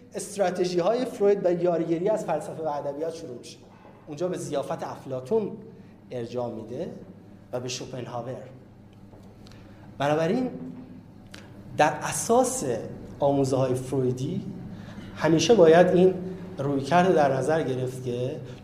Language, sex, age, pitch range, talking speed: Persian, male, 30-49, 115-165 Hz, 110 wpm